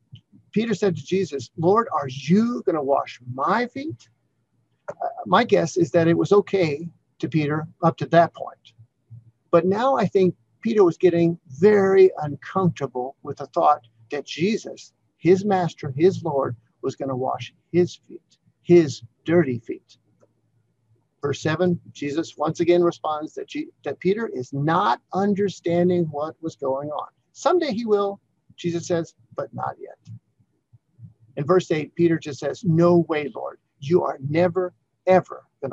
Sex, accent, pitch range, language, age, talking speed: male, American, 135-190 Hz, English, 50-69, 155 wpm